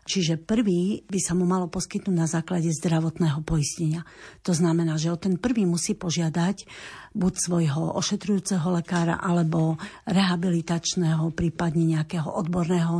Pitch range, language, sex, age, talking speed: 170-195 Hz, Slovak, female, 50-69, 130 wpm